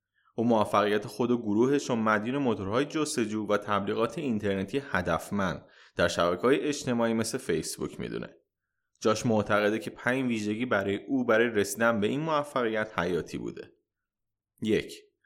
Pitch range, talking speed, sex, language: 100-130 Hz, 135 wpm, male, Persian